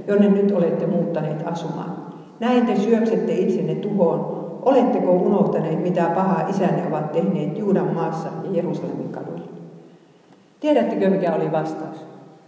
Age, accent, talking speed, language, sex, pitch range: 50-69, native, 125 wpm, Finnish, female, 165-210 Hz